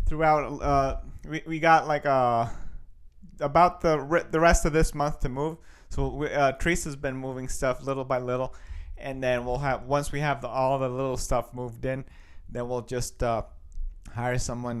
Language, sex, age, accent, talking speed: English, male, 30-49, American, 190 wpm